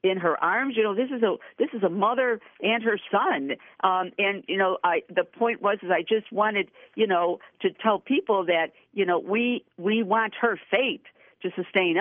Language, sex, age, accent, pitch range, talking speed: English, female, 50-69, American, 160-205 Hz, 210 wpm